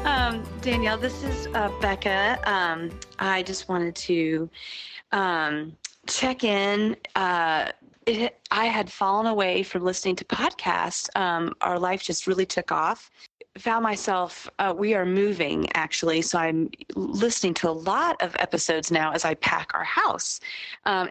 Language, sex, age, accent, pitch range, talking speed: English, female, 30-49, American, 160-195 Hz, 150 wpm